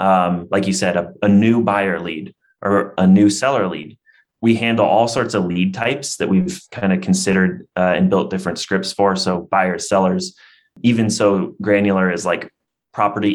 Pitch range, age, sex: 95-110 Hz, 30-49, male